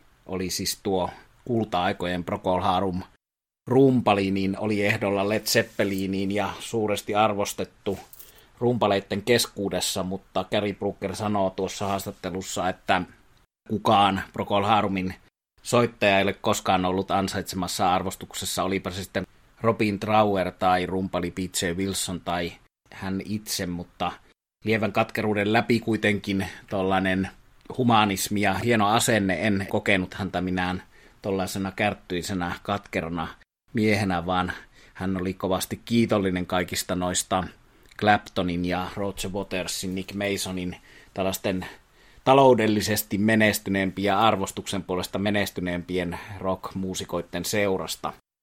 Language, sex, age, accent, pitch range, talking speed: Finnish, male, 30-49, native, 95-105 Hz, 100 wpm